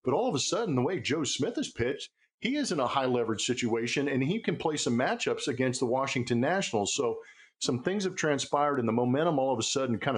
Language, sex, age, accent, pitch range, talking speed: English, male, 50-69, American, 120-155 Hz, 240 wpm